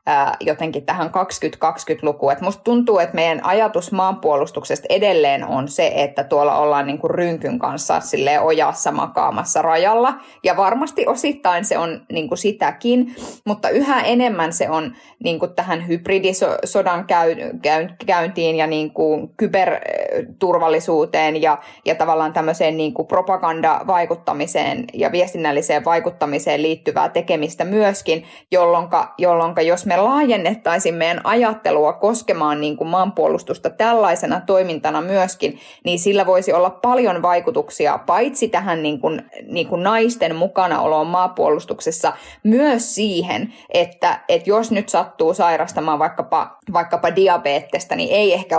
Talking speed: 120 wpm